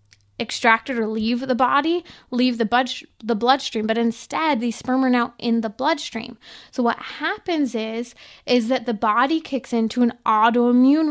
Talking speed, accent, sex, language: 175 wpm, American, female, English